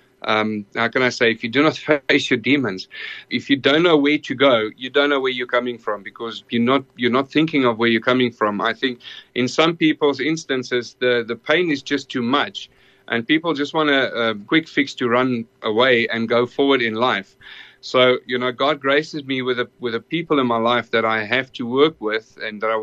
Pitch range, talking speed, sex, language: 115-140 Hz, 235 wpm, male, English